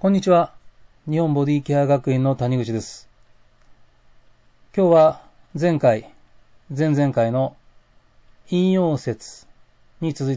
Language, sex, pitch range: Japanese, male, 125-170 Hz